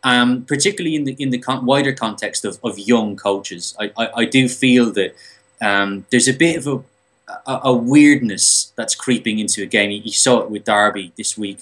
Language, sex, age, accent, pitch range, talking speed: English, male, 20-39, British, 105-135 Hz, 200 wpm